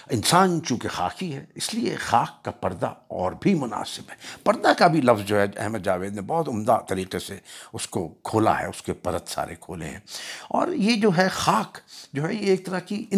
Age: 60-79